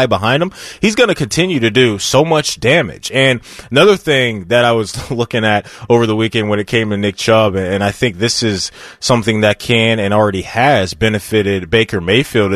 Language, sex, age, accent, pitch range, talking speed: English, male, 20-39, American, 115-155 Hz, 200 wpm